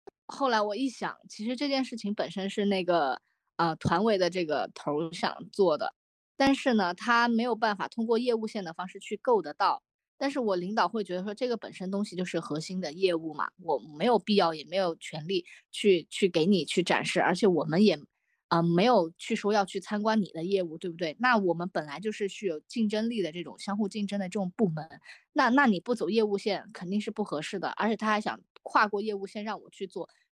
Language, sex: Chinese, female